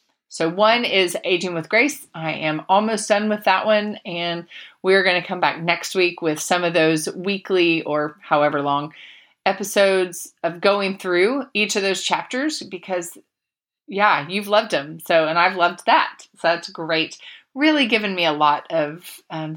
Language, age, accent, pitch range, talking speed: English, 30-49, American, 165-205 Hz, 180 wpm